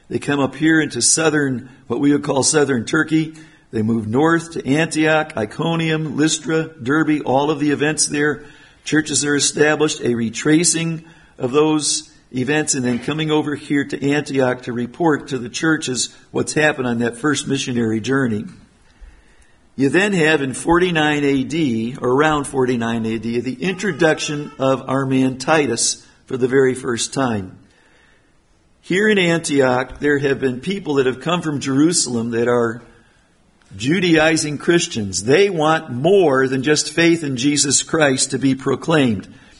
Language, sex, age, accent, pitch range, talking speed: English, male, 50-69, American, 125-155 Hz, 155 wpm